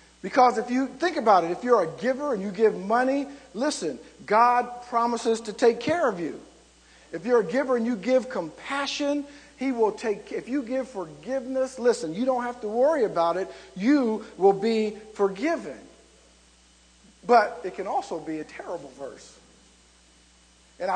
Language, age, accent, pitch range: English, 50-69, American, 180-265 Hz